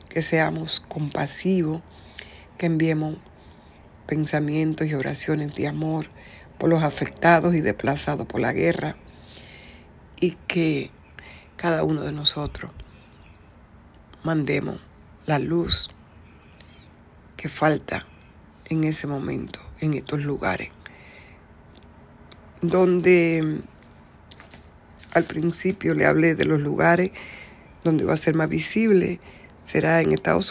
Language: Spanish